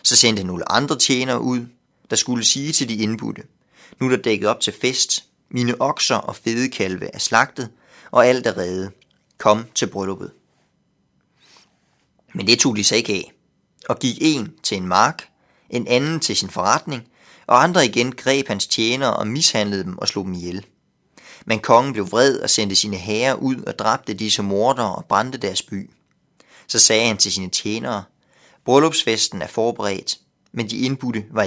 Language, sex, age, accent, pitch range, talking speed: Danish, male, 30-49, native, 105-130 Hz, 175 wpm